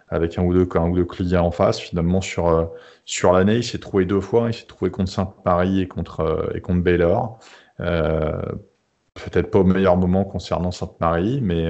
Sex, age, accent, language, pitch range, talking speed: male, 30-49, French, French, 90-110 Hz, 220 wpm